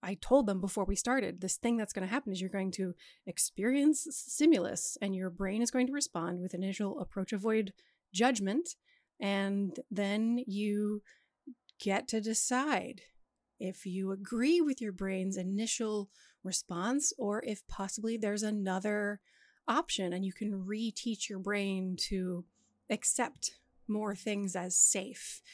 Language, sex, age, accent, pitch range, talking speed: English, female, 30-49, American, 190-225 Hz, 145 wpm